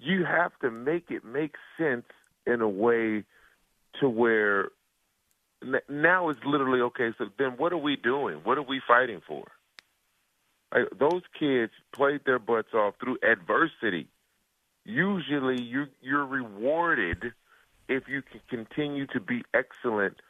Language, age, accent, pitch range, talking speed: English, 40-59, American, 110-140 Hz, 135 wpm